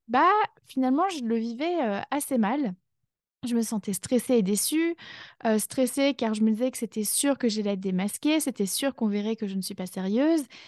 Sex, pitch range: female, 205-260 Hz